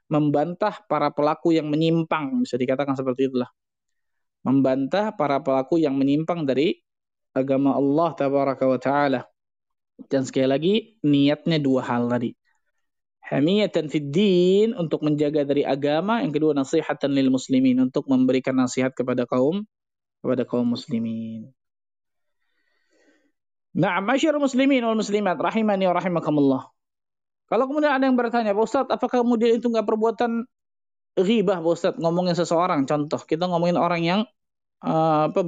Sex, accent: male, native